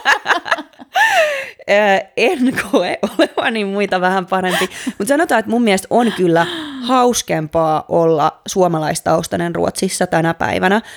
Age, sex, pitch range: 20-39, female, 170-205 Hz